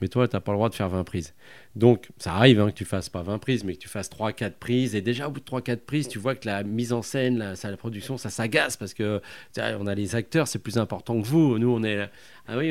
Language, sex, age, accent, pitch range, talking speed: French, male, 40-59, French, 100-125 Hz, 305 wpm